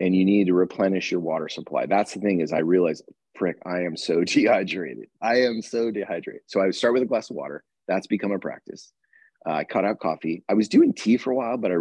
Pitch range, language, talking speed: 85-105 Hz, English, 255 wpm